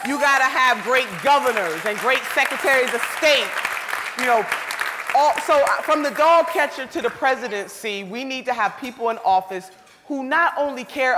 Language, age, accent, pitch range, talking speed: English, 30-49, American, 220-290 Hz, 175 wpm